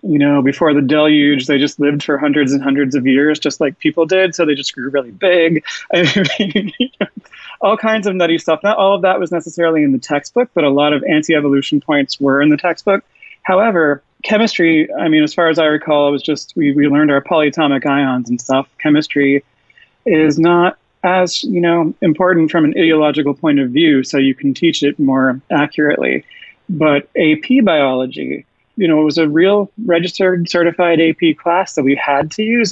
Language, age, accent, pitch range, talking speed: English, 30-49, American, 145-180 Hz, 195 wpm